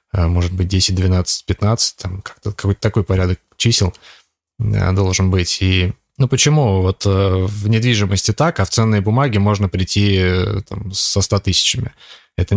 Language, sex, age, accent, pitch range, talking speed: Russian, male, 20-39, native, 95-110 Hz, 150 wpm